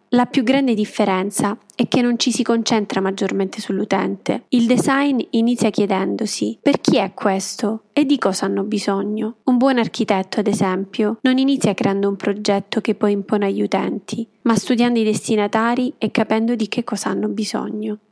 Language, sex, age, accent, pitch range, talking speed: Italian, female, 20-39, native, 210-245 Hz, 170 wpm